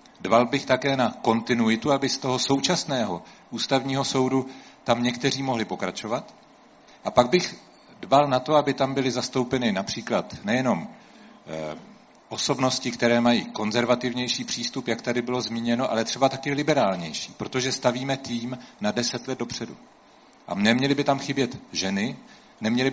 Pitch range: 115-140 Hz